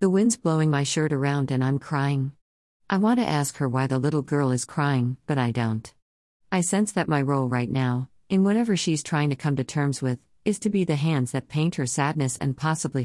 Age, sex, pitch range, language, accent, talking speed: 50-69, female, 130-170 Hz, English, American, 230 wpm